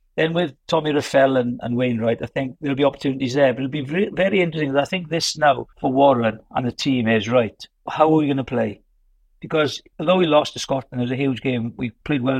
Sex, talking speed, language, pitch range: male, 240 wpm, English, 125-150 Hz